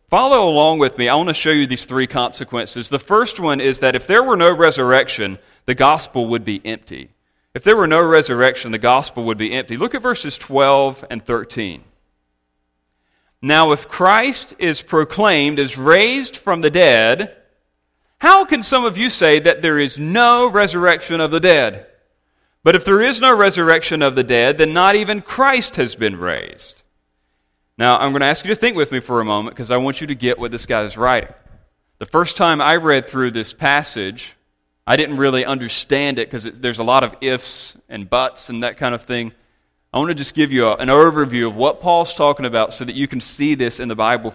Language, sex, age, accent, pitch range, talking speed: English, male, 40-59, American, 120-170 Hz, 210 wpm